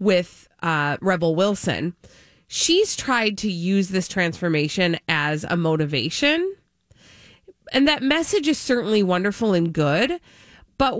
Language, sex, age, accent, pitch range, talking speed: English, female, 30-49, American, 170-220 Hz, 120 wpm